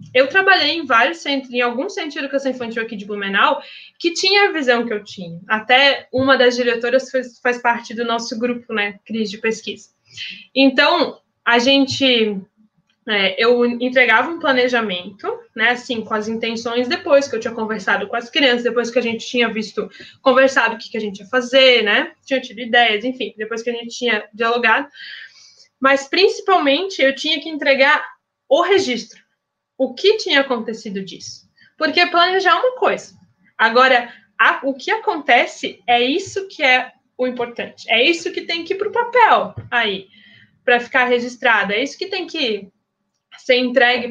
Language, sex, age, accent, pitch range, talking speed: Portuguese, female, 20-39, Brazilian, 225-290 Hz, 170 wpm